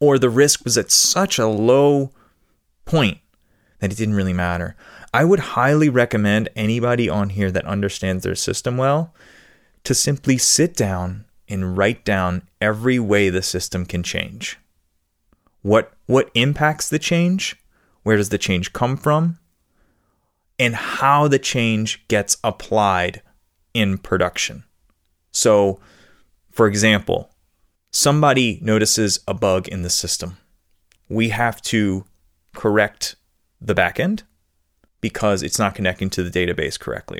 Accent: American